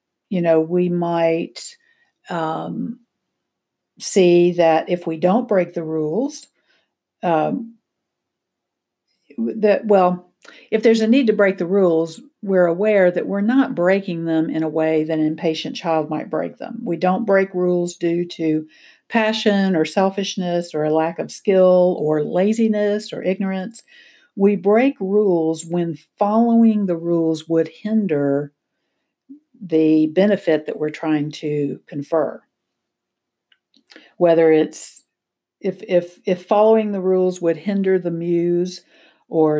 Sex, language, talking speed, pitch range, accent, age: female, English, 135 wpm, 165-215 Hz, American, 60-79